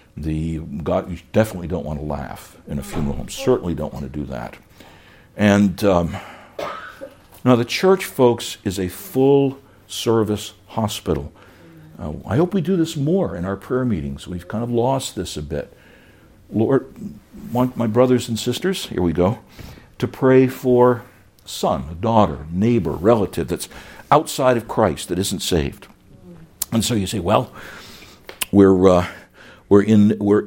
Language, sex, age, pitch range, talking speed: English, male, 60-79, 95-125 Hz, 160 wpm